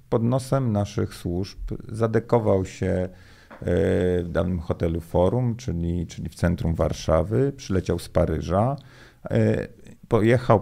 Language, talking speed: Polish, 105 wpm